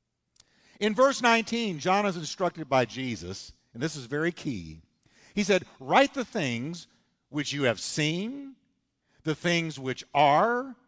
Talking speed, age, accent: 145 wpm, 50-69, American